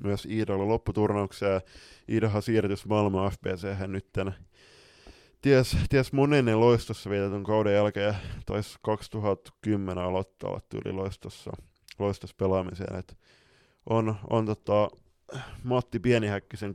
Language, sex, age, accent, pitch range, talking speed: Finnish, male, 20-39, native, 95-110 Hz, 95 wpm